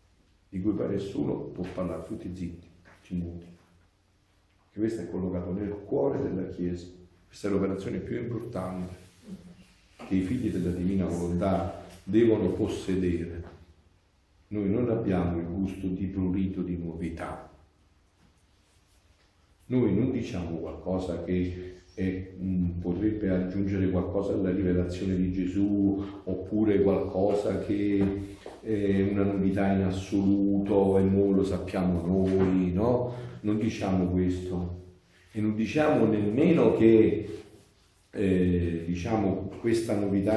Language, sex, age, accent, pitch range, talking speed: Italian, male, 50-69, native, 90-100 Hz, 115 wpm